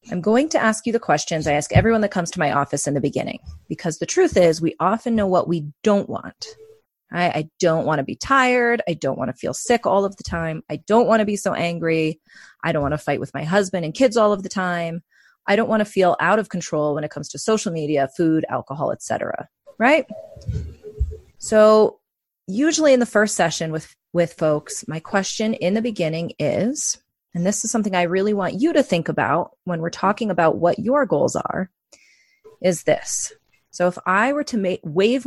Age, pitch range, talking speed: 30-49, 160-220 Hz, 215 wpm